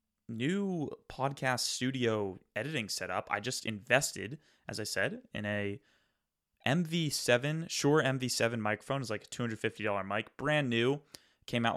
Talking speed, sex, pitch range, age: 135 wpm, male, 100-120 Hz, 20-39